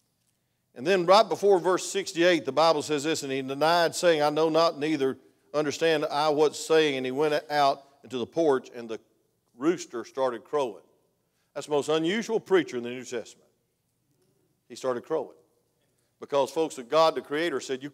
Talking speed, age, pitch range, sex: 180 wpm, 50-69, 140-220 Hz, male